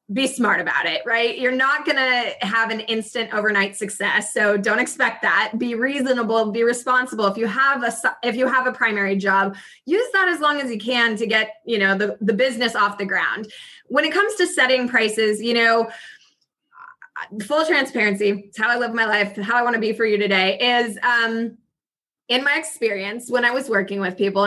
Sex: female